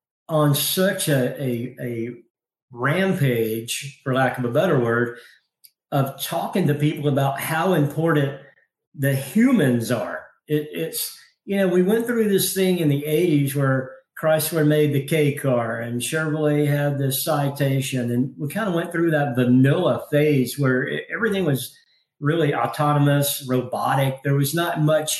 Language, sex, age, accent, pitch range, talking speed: English, male, 50-69, American, 135-170 Hz, 155 wpm